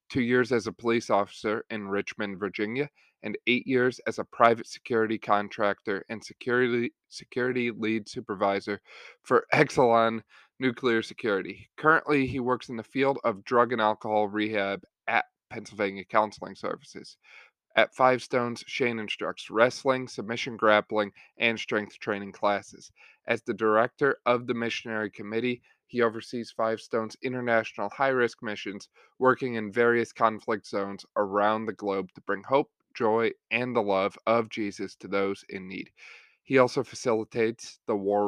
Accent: American